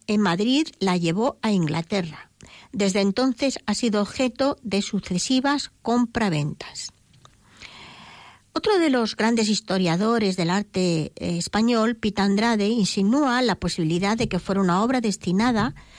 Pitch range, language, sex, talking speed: 185-245 Hz, Spanish, female, 125 wpm